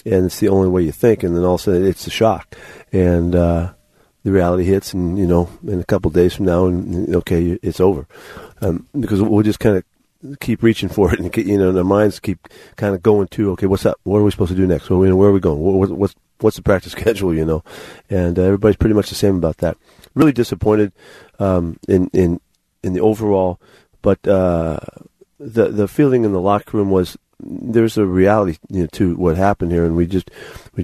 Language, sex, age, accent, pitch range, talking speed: English, male, 40-59, American, 85-105 Hz, 230 wpm